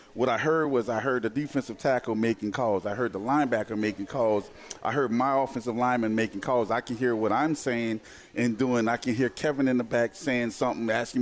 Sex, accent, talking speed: male, American, 225 wpm